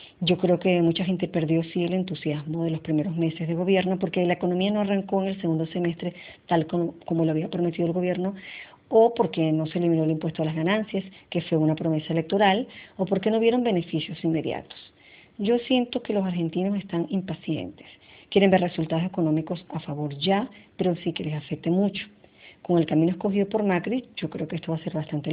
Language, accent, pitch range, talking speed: Spanish, American, 160-190 Hz, 205 wpm